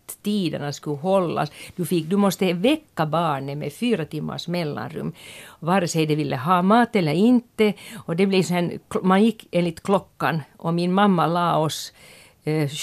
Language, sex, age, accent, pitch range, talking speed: Finnish, female, 50-69, native, 155-200 Hz, 165 wpm